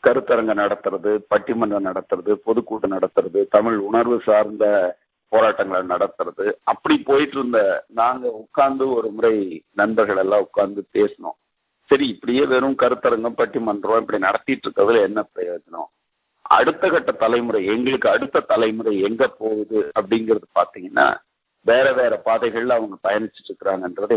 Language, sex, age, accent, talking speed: Tamil, male, 50-69, native, 120 wpm